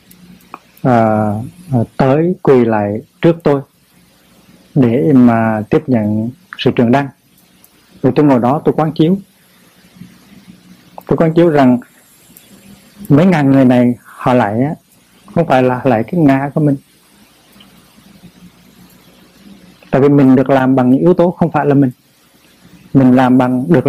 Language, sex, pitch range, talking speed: Vietnamese, male, 120-160 Hz, 145 wpm